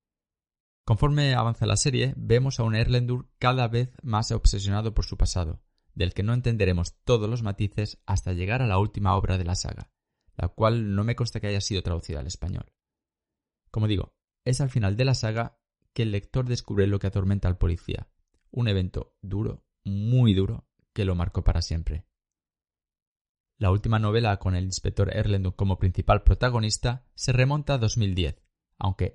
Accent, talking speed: Spanish, 175 wpm